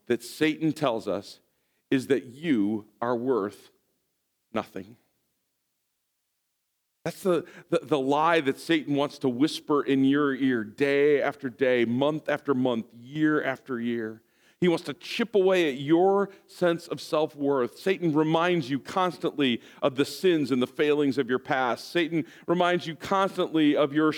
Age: 40-59